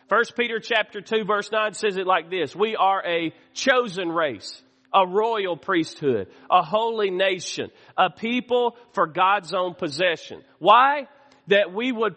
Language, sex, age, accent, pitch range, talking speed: English, male, 40-59, American, 170-230 Hz, 155 wpm